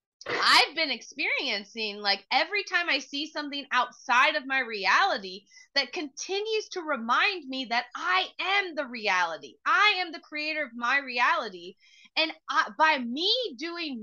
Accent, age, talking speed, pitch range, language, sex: American, 20-39, 145 wpm, 250-350 Hz, English, female